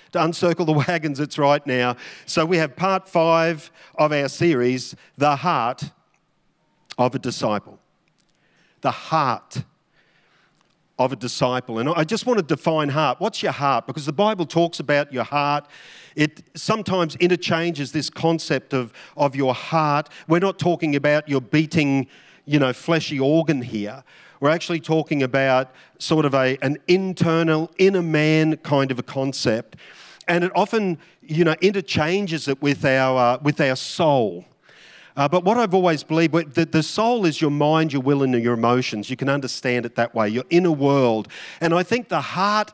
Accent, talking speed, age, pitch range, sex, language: Australian, 170 wpm, 50-69, 135-170 Hz, male, English